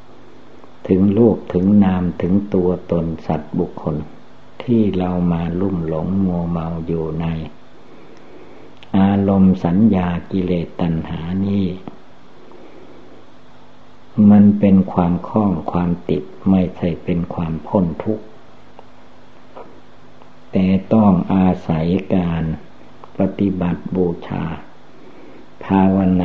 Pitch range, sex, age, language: 85-95 Hz, male, 60-79, Thai